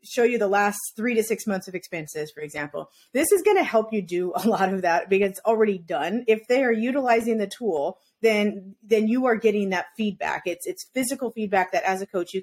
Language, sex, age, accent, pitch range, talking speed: English, female, 30-49, American, 185-240 Hz, 235 wpm